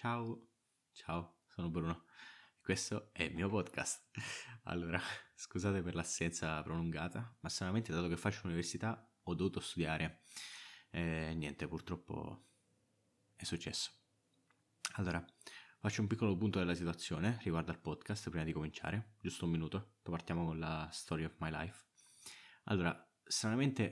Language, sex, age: Italian, male, 20-39